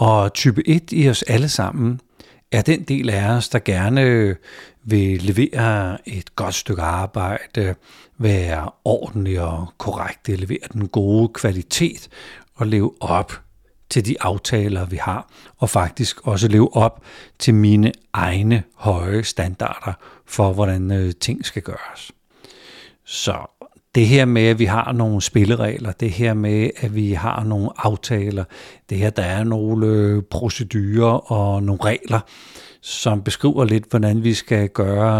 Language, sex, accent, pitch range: Danish, male, native, 100-115 Hz